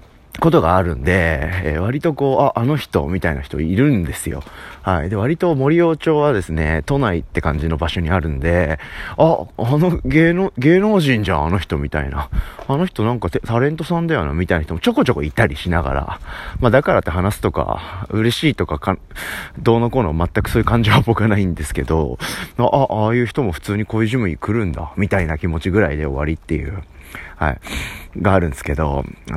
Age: 30-49